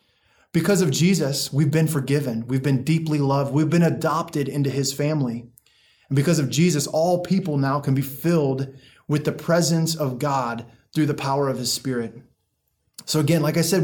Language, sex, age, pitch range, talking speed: English, male, 20-39, 130-165 Hz, 180 wpm